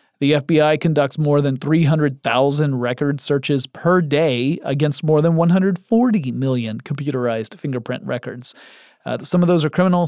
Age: 30-49